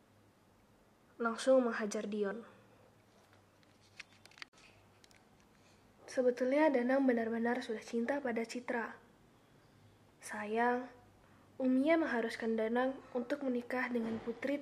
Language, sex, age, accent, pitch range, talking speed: Indonesian, female, 20-39, native, 215-250 Hz, 75 wpm